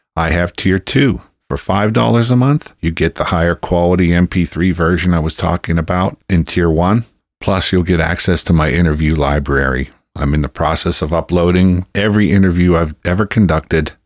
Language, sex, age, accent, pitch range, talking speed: English, male, 50-69, American, 80-90 Hz, 175 wpm